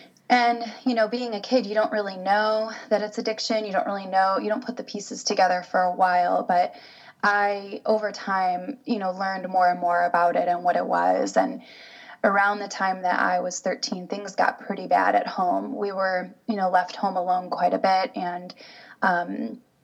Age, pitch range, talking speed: 20-39, 190-225 Hz, 205 wpm